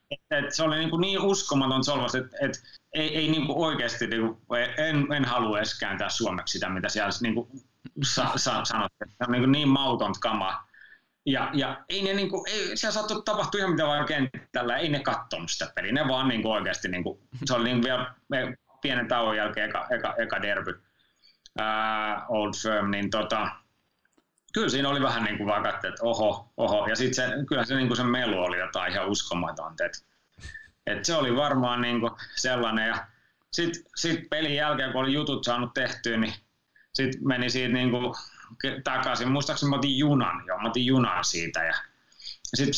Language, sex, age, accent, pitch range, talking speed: Finnish, male, 30-49, native, 120-150 Hz, 190 wpm